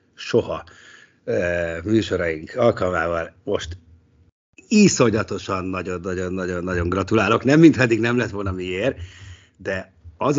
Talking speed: 100 wpm